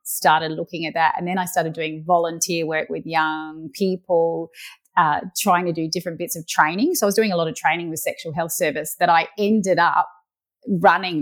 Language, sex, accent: English, female, Australian